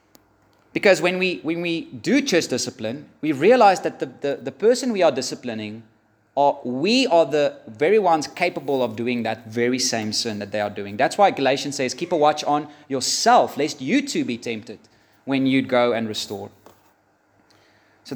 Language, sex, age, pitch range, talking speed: English, male, 30-49, 110-145 Hz, 180 wpm